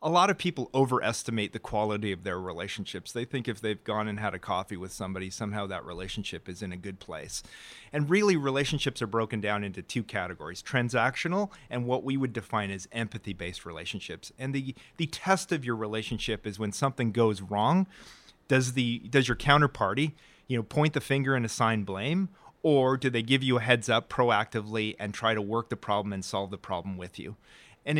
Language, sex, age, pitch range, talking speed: English, male, 30-49, 105-140 Hz, 200 wpm